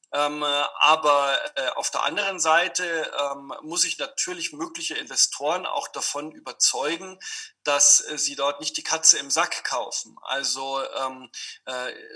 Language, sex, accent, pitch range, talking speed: German, male, German, 140-170 Hz, 140 wpm